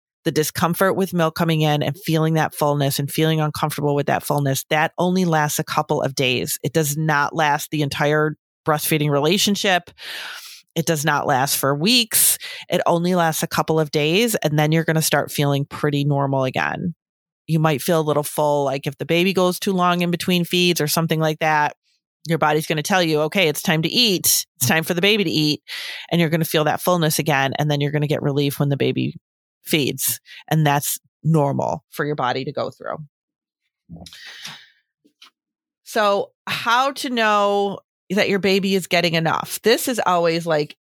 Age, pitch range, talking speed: 30-49, 150-180 Hz, 195 wpm